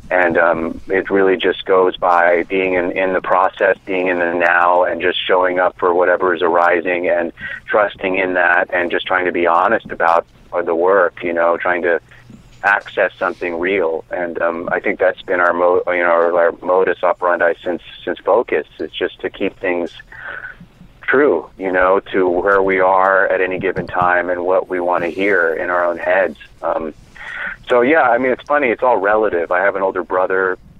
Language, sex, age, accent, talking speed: English, male, 30-49, American, 200 wpm